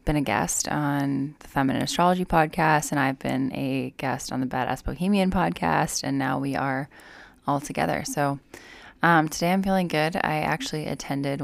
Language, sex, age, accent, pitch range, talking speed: English, female, 10-29, American, 130-150 Hz, 175 wpm